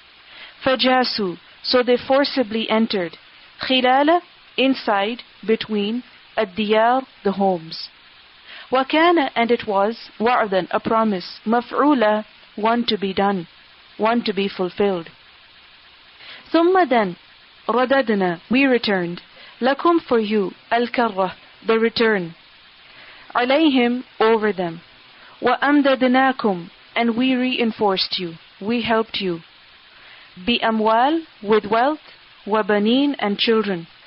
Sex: female